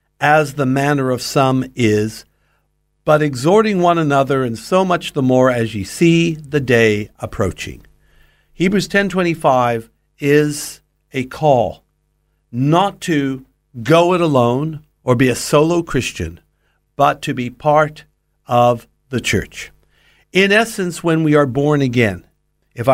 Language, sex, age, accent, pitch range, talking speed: English, male, 60-79, American, 120-160 Hz, 140 wpm